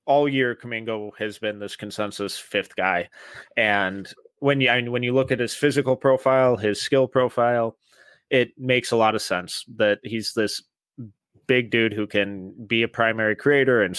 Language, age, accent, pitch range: English, 20-39, American, 90-115 Hz